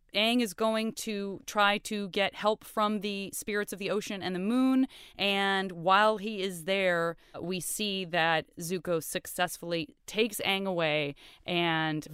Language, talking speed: English, 155 wpm